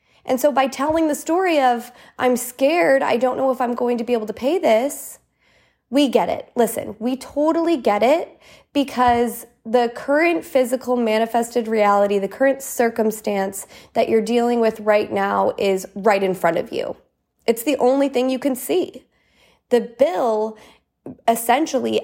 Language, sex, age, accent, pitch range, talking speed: English, female, 20-39, American, 200-265 Hz, 165 wpm